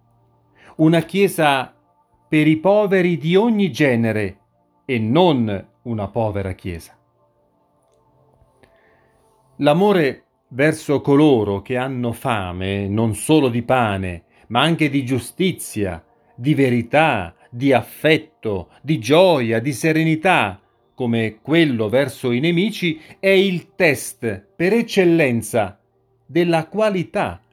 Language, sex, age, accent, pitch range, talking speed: Italian, male, 40-59, native, 115-180 Hz, 100 wpm